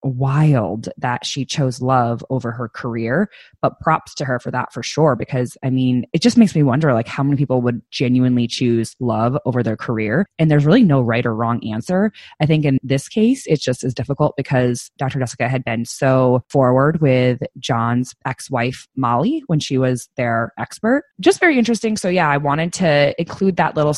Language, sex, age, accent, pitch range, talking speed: English, female, 20-39, American, 120-150 Hz, 200 wpm